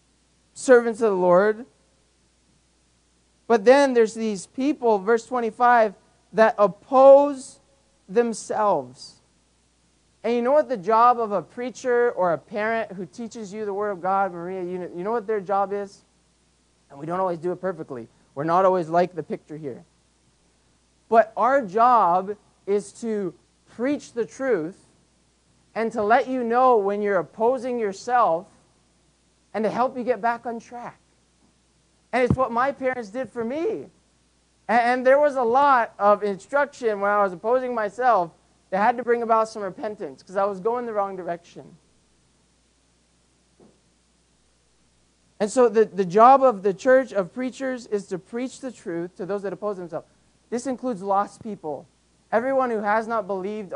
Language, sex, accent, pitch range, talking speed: English, male, American, 175-240 Hz, 160 wpm